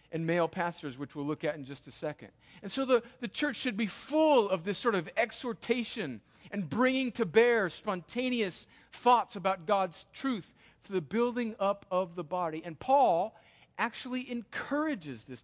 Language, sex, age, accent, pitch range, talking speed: English, male, 50-69, American, 150-205 Hz, 175 wpm